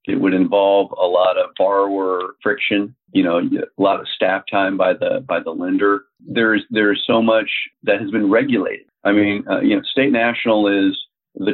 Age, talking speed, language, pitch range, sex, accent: 40-59, 190 wpm, English, 100-140 Hz, male, American